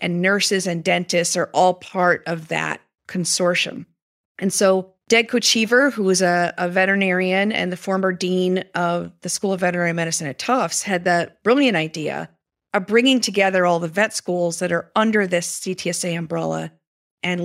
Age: 40-59